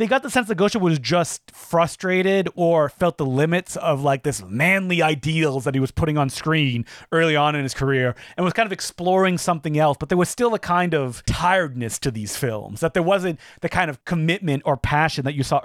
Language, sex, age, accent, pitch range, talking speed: English, male, 30-49, American, 140-185 Hz, 225 wpm